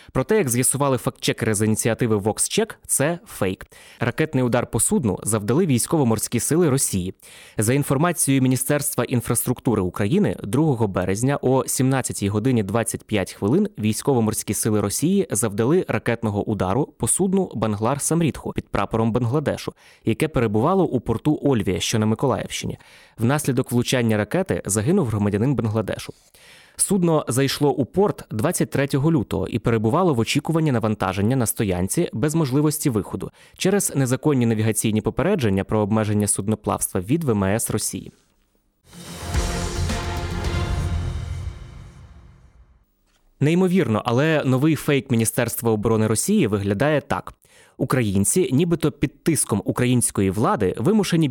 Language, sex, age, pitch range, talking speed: Ukrainian, male, 20-39, 110-145 Hz, 115 wpm